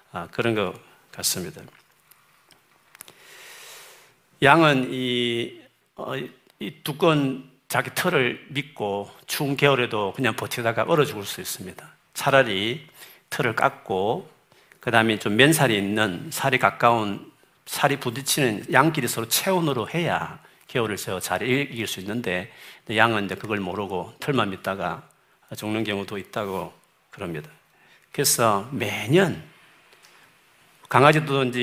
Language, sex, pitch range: Korean, male, 105-140 Hz